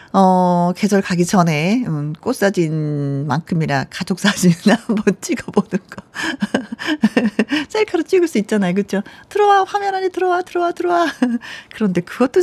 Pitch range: 185-270 Hz